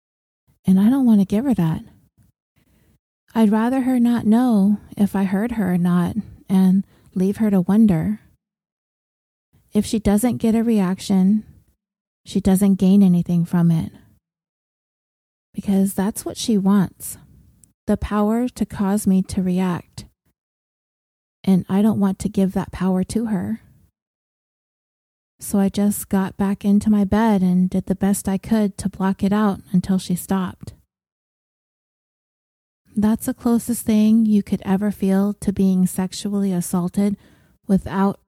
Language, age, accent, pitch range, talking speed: English, 20-39, American, 185-210 Hz, 145 wpm